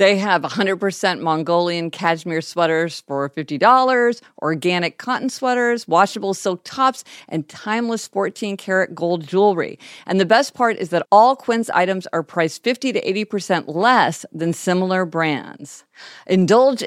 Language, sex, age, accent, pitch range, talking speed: English, female, 50-69, American, 165-230 Hz, 135 wpm